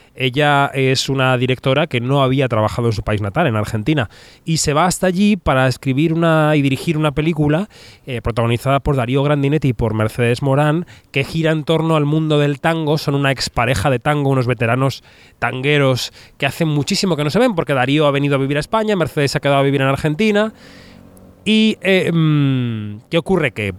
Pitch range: 120-155 Hz